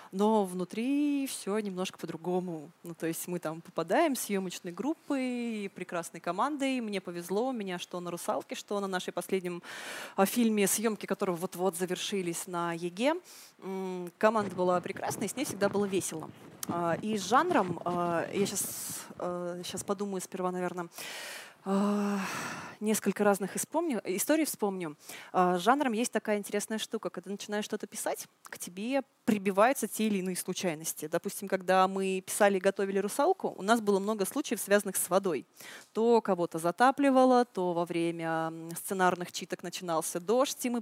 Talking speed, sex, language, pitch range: 150 wpm, female, Russian, 180-215 Hz